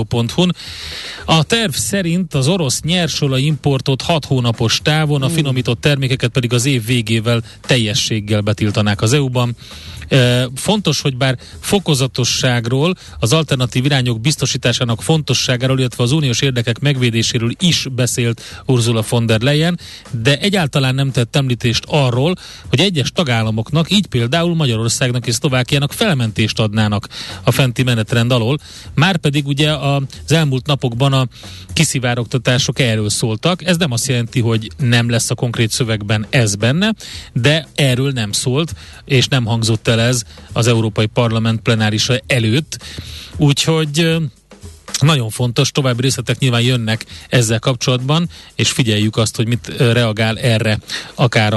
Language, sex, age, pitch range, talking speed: Hungarian, male, 30-49, 115-145 Hz, 135 wpm